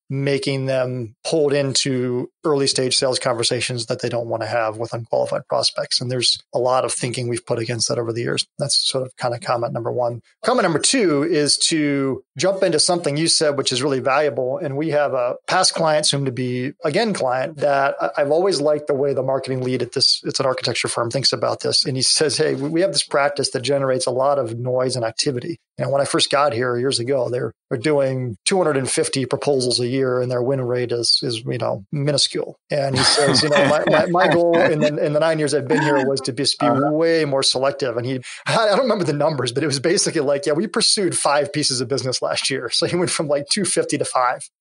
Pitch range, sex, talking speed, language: 125-150 Hz, male, 235 wpm, English